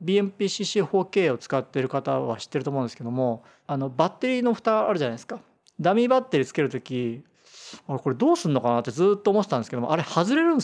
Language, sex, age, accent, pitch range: Japanese, male, 40-59, native, 130-190 Hz